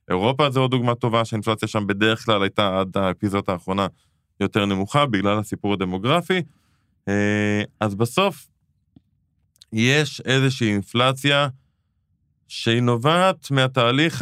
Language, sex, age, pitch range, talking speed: Hebrew, male, 20-39, 100-130 Hz, 110 wpm